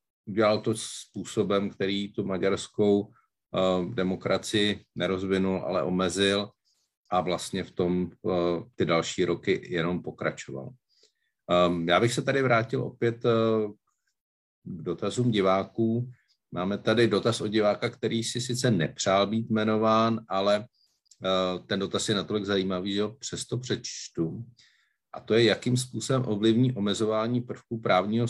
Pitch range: 95-110 Hz